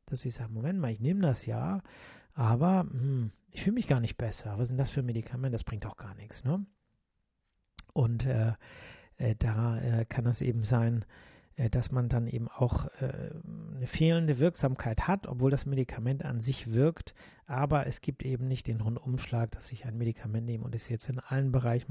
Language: German